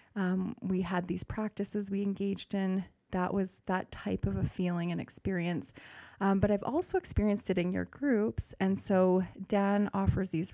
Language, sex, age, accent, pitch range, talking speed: English, female, 30-49, American, 185-210 Hz, 175 wpm